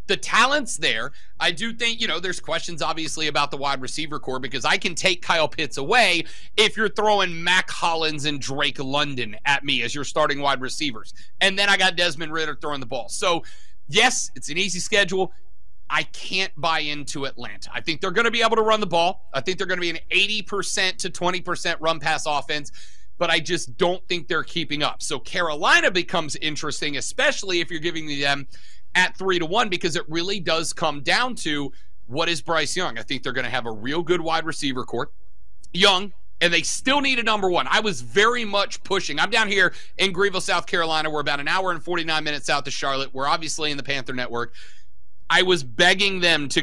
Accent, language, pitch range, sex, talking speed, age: American, English, 140-190 Hz, male, 215 wpm, 30-49